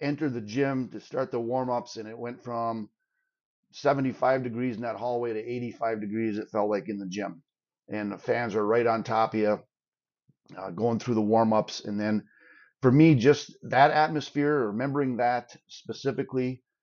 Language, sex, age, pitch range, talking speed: English, male, 30-49, 105-130 Hz, 175 wpm